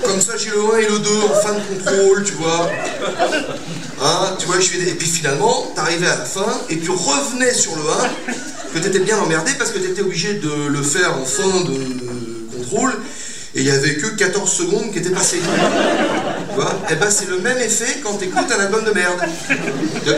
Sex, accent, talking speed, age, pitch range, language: male, French, 215 wpm, 40-59, 175-240 Hz, French